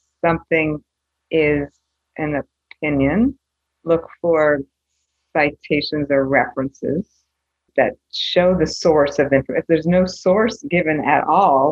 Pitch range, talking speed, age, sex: 145-185 Hz, 115 wpm, 50-69, female